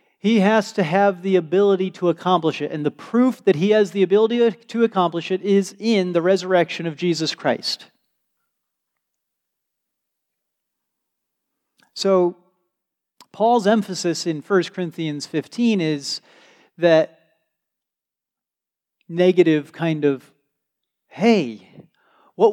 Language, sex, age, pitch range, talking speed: English, male, 40-59, 155-210 Hz, 110 wpm